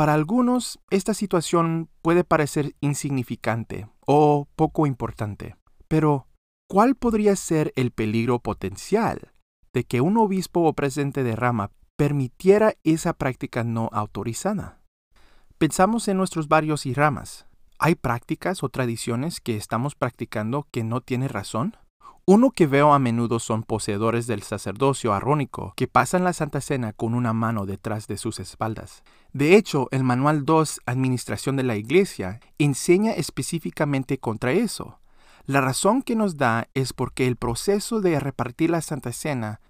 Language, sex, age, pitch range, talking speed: Spanish, male, 40-59, 115-165 Hz, 145 wpm